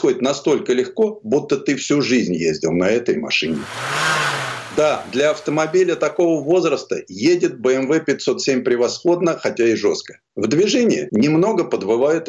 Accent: native